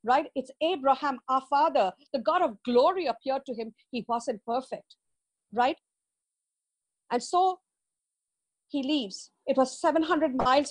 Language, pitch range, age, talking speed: English, 200-275 Hz, 50-69, 135 wpm